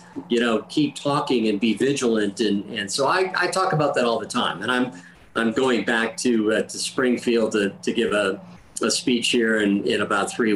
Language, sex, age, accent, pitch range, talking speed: English, male, 50-69, American, 110-130 Hz, 215 wpm